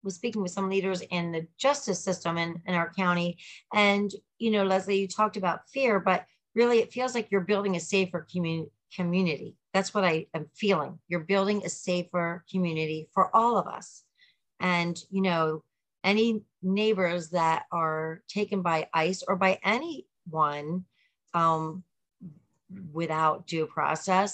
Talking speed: 155 wpm